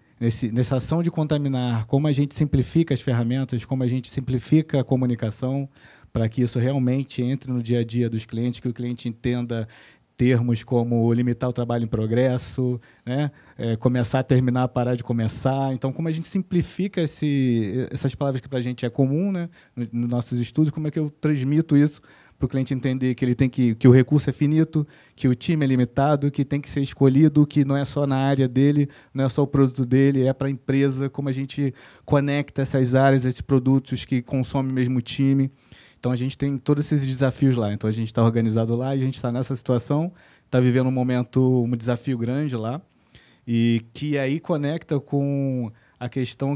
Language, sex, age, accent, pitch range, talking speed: Portuguese, male, 20-39, Brazilian, 120-140 Hz, 200 wpm